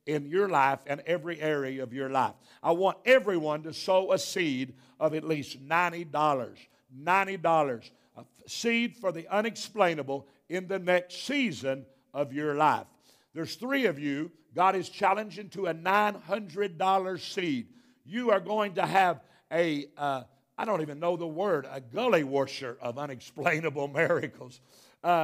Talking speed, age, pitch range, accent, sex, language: 150 wpm, 60-79, 155-220 Hz, American, male, English